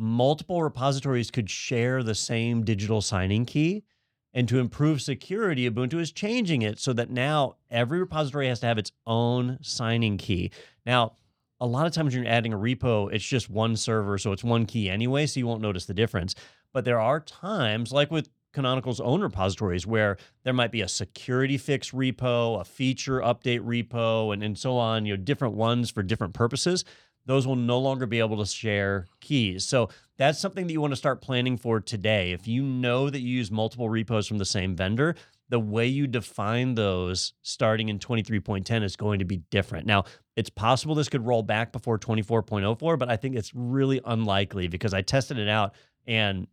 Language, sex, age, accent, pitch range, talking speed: English, male, 30-49, American, 105-130 Hz, 195 wpm